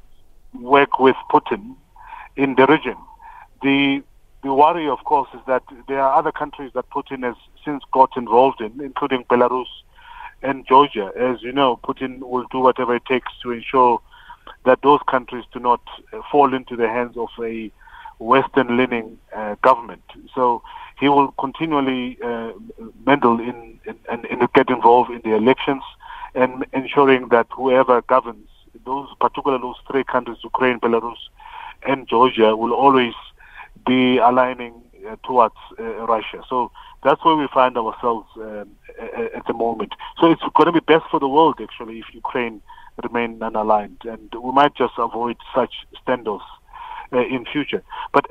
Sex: male